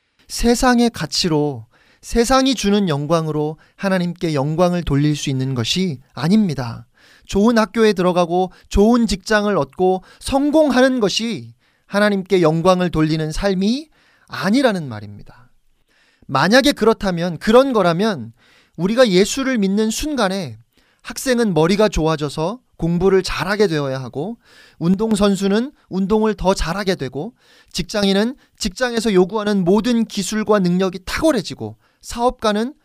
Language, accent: Korean, native